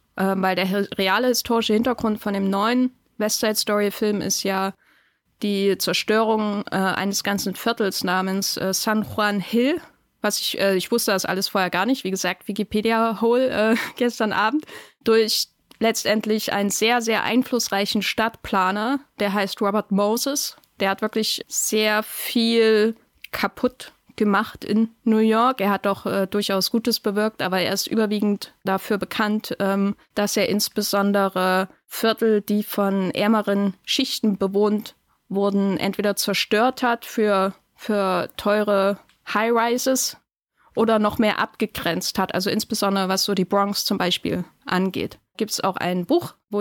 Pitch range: 195-230 Hz